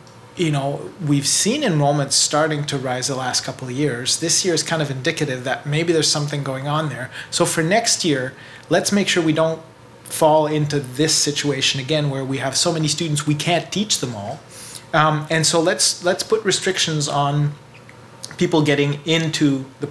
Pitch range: 140-165 Hz